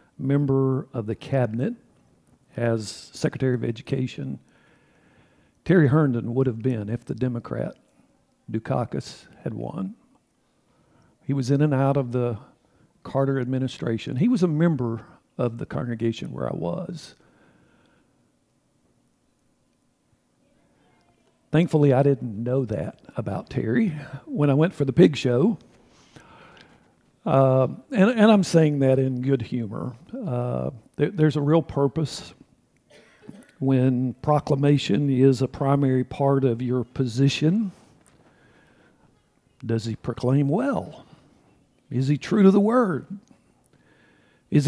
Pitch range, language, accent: 125-155 Hz, English, American